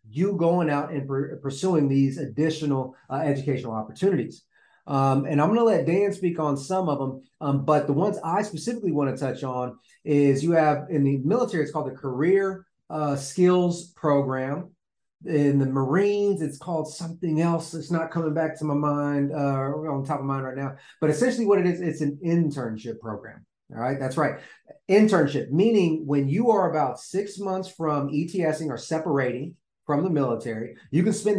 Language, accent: English, American